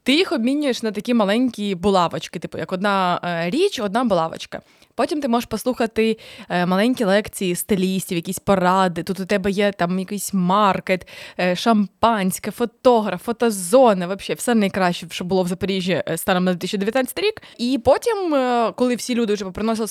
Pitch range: 195-240 Hz